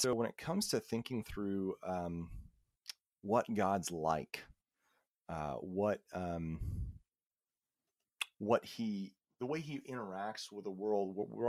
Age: 30-49